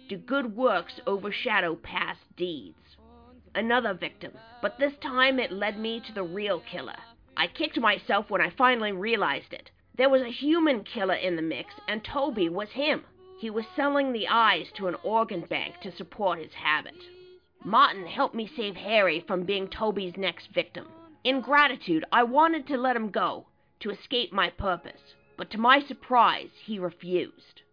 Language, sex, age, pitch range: English, female, 50-69, 185-250 Hz